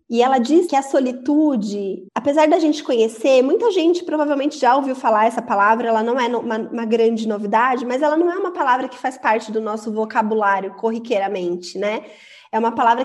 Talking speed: 195 wpm